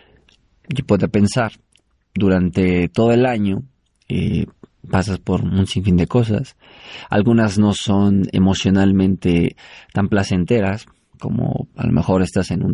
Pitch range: 95-110 Hz